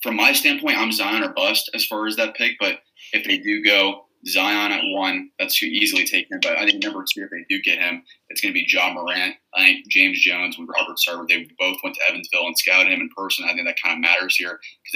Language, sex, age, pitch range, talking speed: English, male, 20-39, 280-300 Hz, 260 wpm